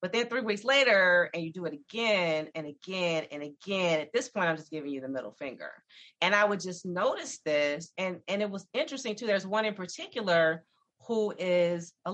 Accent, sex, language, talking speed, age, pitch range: American, female, English, 215 wpm, 30-49, 145-205 Hz